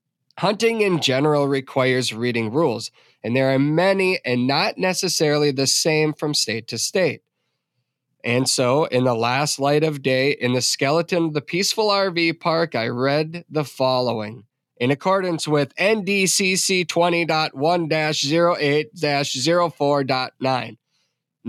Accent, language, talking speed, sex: American, English, 125 wpm, male